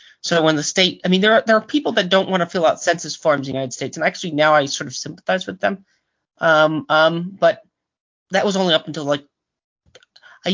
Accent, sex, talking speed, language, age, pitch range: American, male, 240 wpm, English, 30-49, 145-200 Hz